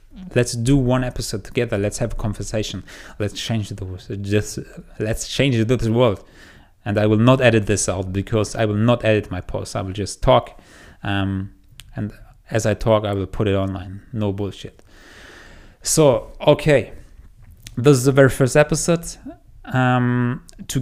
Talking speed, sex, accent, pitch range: 165 wpm, male, German, 100-120 Hz